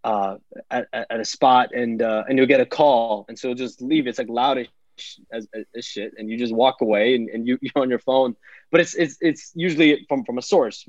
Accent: American